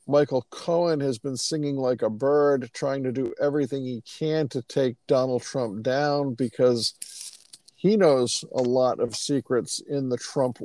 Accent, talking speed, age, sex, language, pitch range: American, 165 wpm, 50-69, male, English, 120-145 Hz